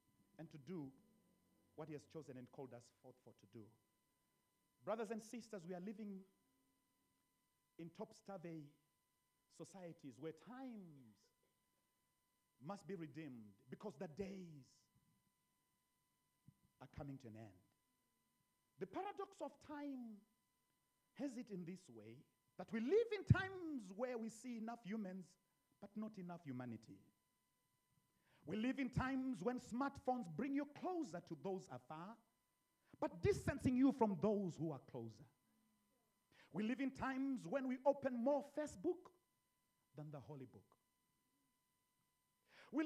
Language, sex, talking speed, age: English, male, 130 wpm, 40-59